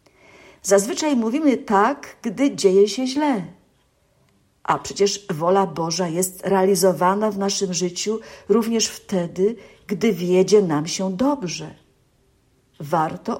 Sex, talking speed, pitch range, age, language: female, 105 wpm, 175-220 Hz, 50-69, Polish